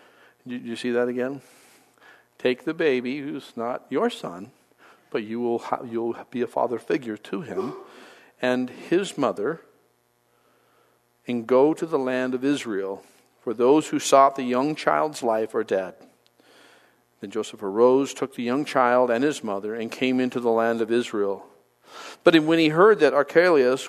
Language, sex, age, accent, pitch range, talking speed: English, male, 50-69, American, 115-140 Hz, 165 wpm